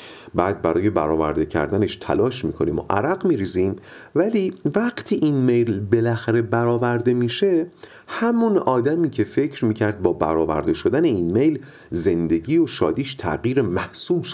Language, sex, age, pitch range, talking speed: Persian, male, 40-59, 90-150 Hz, 130 wpm